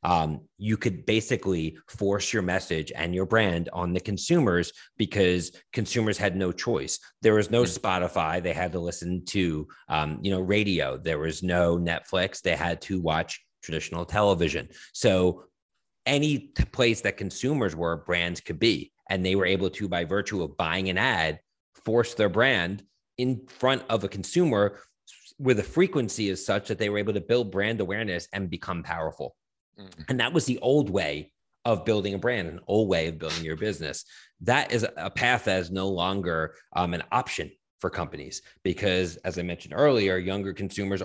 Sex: male